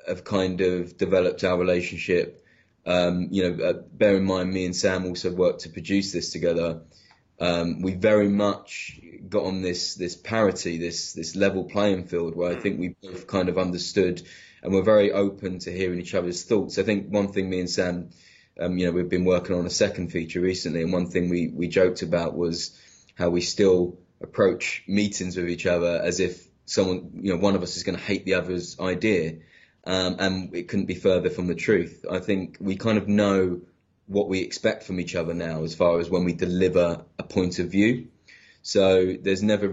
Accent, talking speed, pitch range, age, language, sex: British, 205 wpm, 90-95 Hz, 20-39, English, male